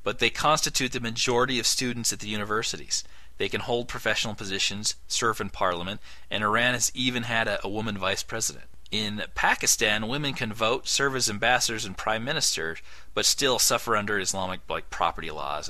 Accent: American